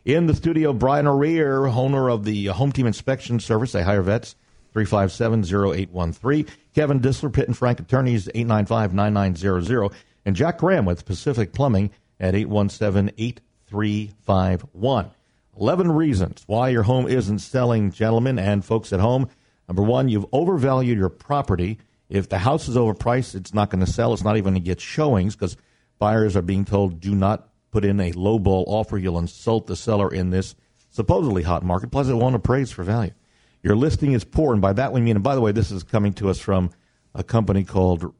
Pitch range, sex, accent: 95-125 Hz, male, American